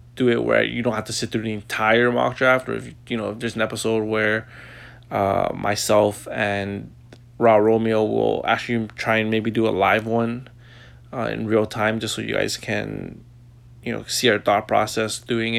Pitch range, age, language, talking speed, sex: 115-120 Hz, 20-39, English, 200 wpm, male